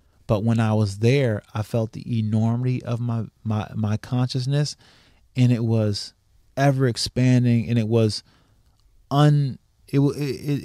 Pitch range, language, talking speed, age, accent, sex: 105-125 Hz, English, 140 wpm, 20-39, American, male